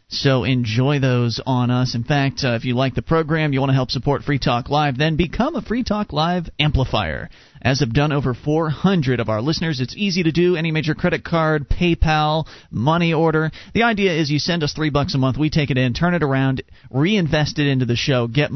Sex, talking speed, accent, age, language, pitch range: male, 225 wpm, American, 30-49, English, 125-165 Hz